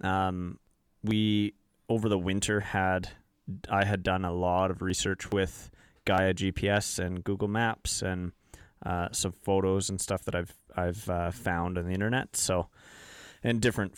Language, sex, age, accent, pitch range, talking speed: English, male, 20-39, American, 95-105 Hz, 155 wpm